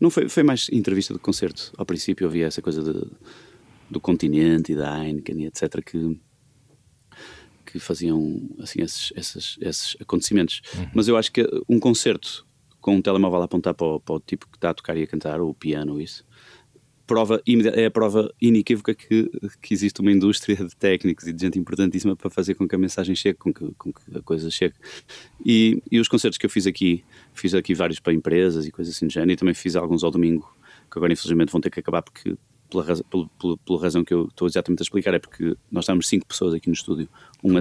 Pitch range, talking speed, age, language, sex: 85-105 Hz, 220 wpm, 30-49, Portuguese, male